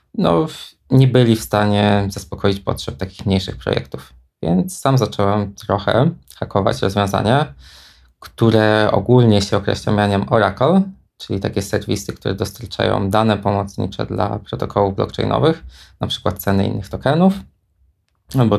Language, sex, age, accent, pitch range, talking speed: Polish, male, 20-39, native, 100-115 Hz, 120 wpm